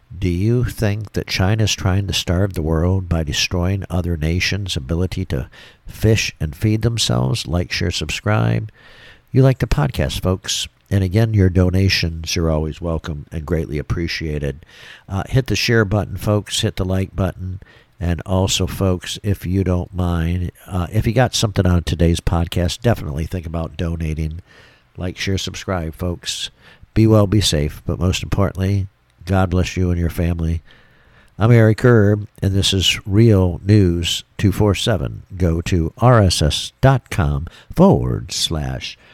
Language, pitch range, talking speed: English, 85-105 Hz, 150 wpm